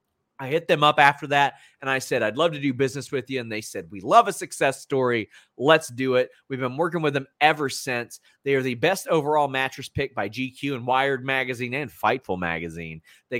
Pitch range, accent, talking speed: 120-150 Hz, American, 225 wpm